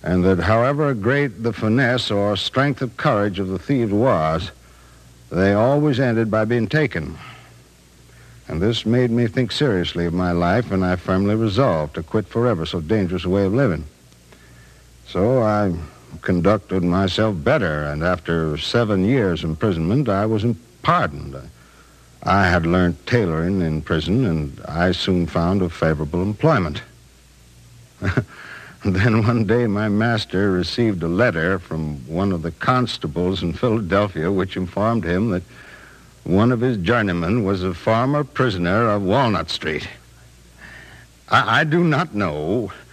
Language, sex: English, male